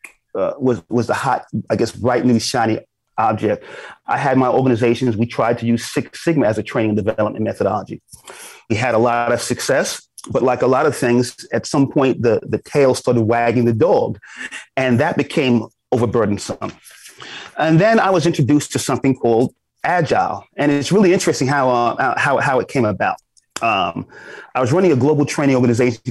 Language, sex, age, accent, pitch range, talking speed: English, male, 30-49, American, 115-145 Hz, 185 wpm